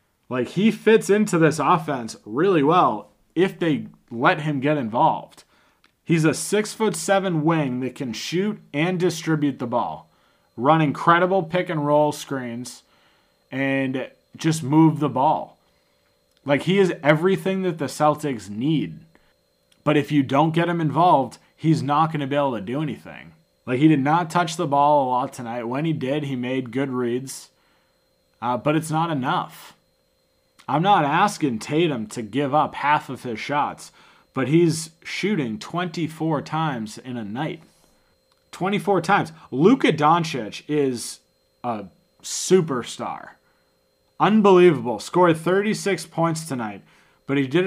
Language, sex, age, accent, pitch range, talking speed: English, male, 30-49, American, 130-170 Hz, 150 wpm